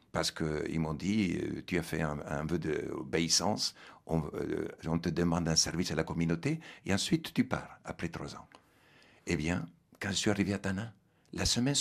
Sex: male